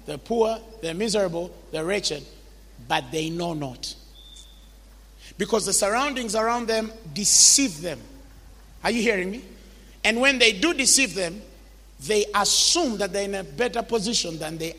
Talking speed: 150 wpm